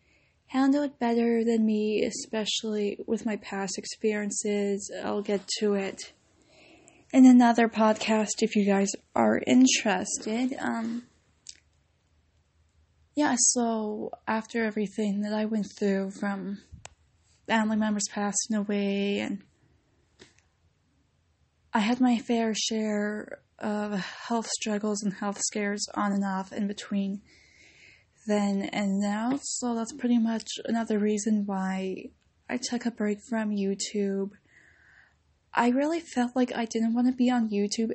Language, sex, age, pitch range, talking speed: English, female, 10-29, 200-230 Hz, 125 wpm